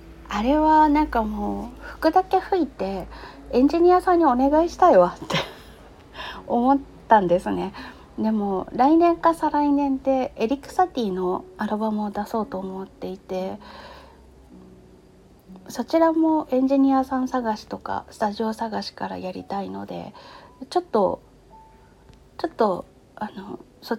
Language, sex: Japanese, female